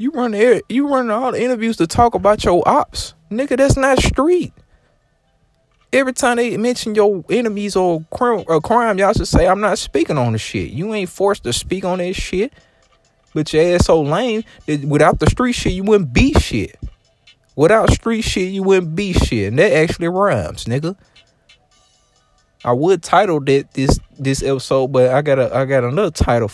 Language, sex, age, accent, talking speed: English, male, 20-39, American, 190 wpm